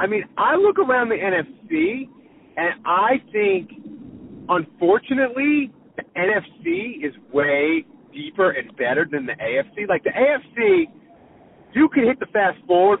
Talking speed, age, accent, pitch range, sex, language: 135 wpm, 40-59, American, 185-295 Hz, male, English